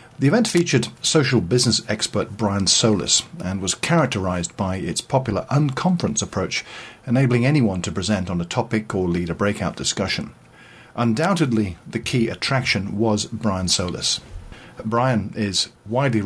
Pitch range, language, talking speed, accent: 100-125 Hz, English, 140 wpm, British